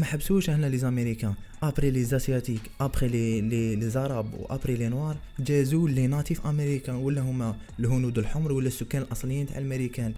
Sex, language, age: male, Arabic, 20-39